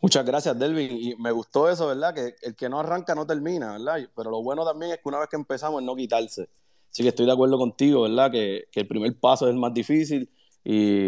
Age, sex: 30-49, male